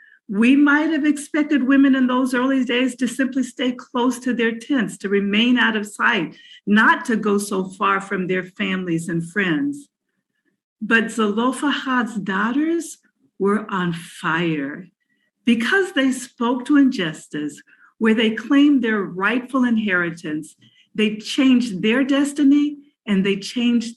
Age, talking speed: 50-69, 140 wpm